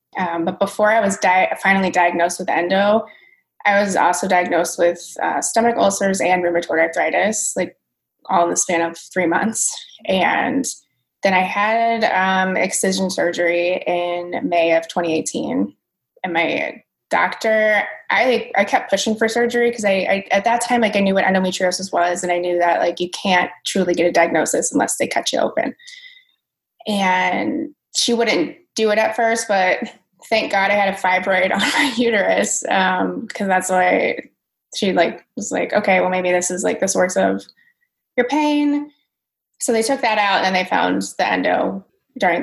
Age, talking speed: 20-39, 175 wpm